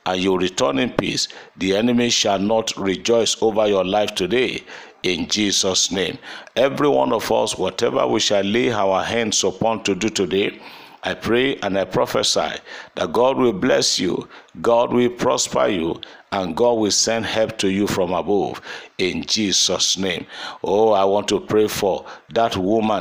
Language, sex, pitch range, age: English, male, 100-115 Hz, 50-69